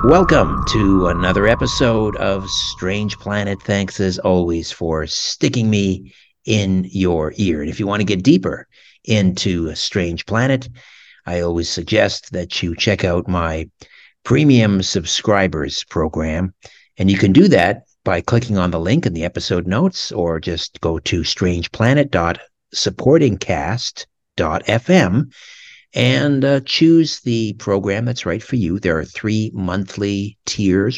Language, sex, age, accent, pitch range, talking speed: English, male, 60-79, American, 90-110 Hz, 135 wpm